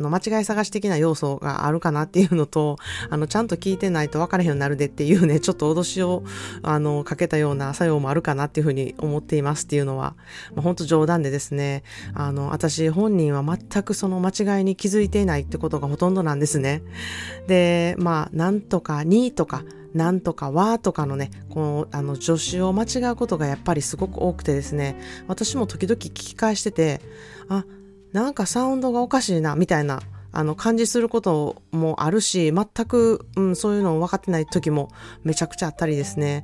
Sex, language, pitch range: female, Japanese, 145-190 Hz